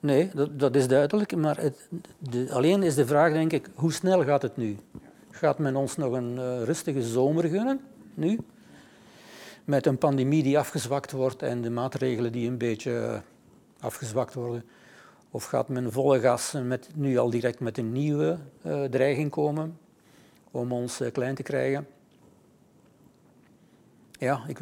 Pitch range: 125-150 Hz